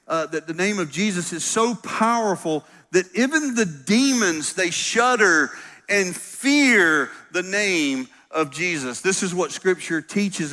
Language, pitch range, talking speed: English, 145-195 Hz, 150 wpm